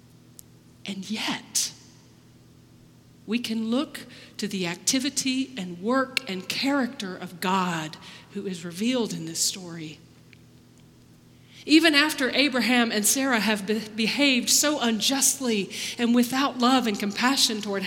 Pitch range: 190-250 Hz